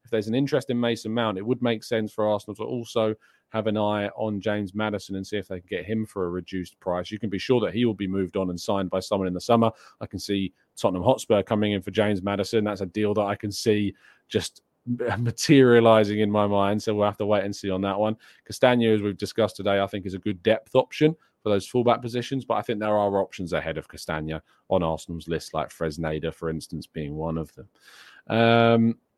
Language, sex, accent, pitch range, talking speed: English, male, British, 95-120 Hz, 245 wpm